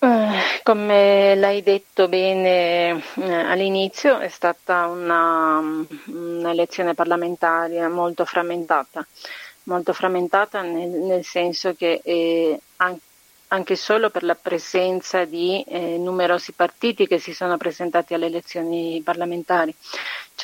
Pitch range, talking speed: 170-185 Hz, 110 wpm